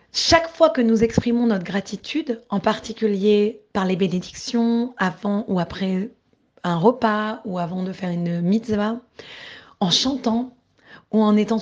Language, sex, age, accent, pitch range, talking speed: French, female, 30-49, French, 200-245 Hz, 145 wpm